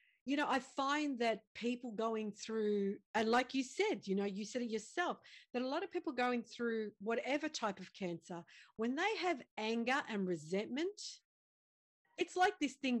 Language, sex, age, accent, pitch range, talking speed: English, female, 40-59, Australian, 210-280 Hz, 180 wpm